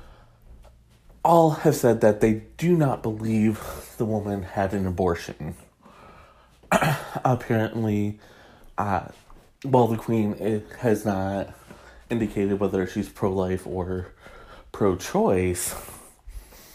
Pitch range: 90-115 Hz